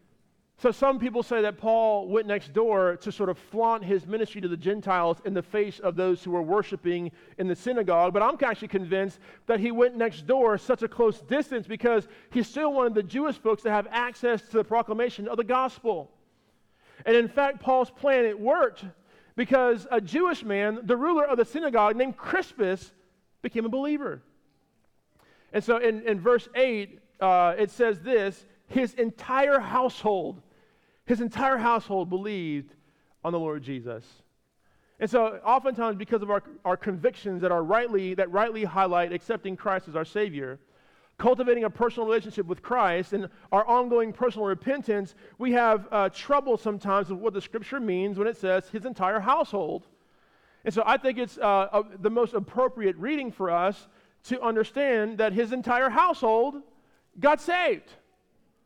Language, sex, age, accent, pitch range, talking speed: English, male, 40-59, American, 195-245 Hz, 170 wpm